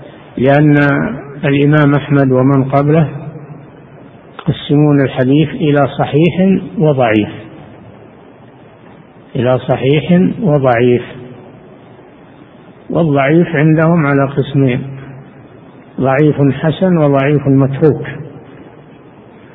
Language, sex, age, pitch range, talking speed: Arabic, male, 60-79, 130-150 Hz, 65 wpm